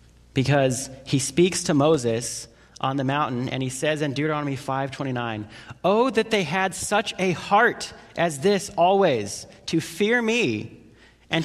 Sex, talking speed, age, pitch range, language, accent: male, 155 wpm, 30-49, 110-155 Hz, English, American